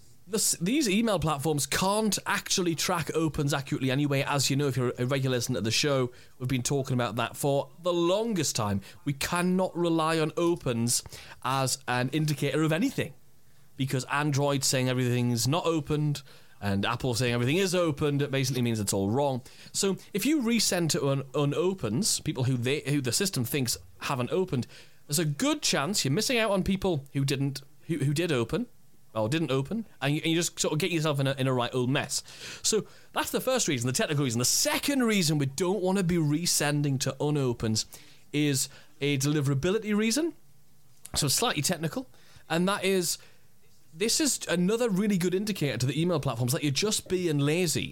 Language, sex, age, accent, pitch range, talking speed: English, male, 30-49, British, 135-180 Hz, 190 wpm